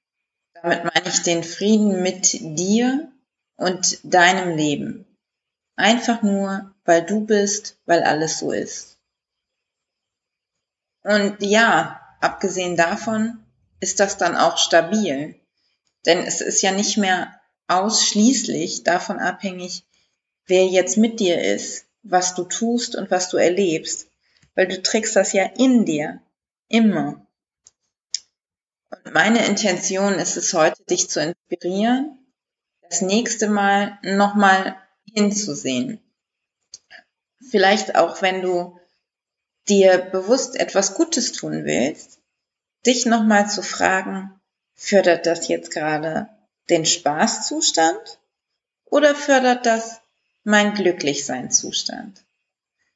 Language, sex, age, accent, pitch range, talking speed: German, female, 30-49, German, 180-220 Hz, 110 wpm